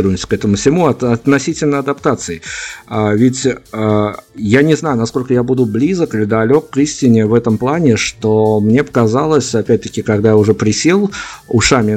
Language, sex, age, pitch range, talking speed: Russian, male, 50-69, 110-130 Hz, 160 wpm